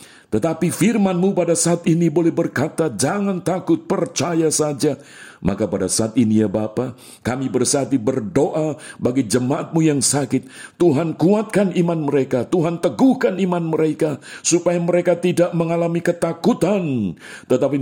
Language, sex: Indonesian, male